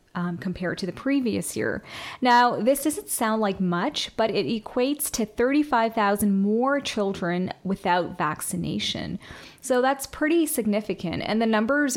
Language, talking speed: English, 140 wpm